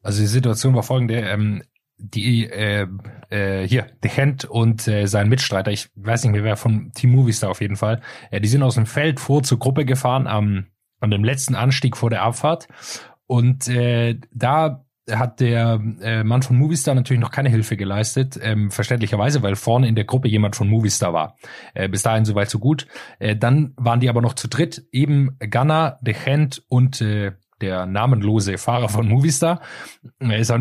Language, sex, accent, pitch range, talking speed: German, male, German, 105-130 Hz, 190 wpm